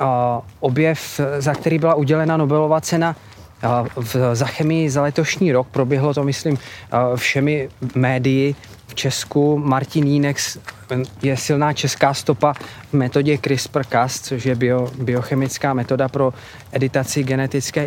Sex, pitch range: male, 125-145 Hz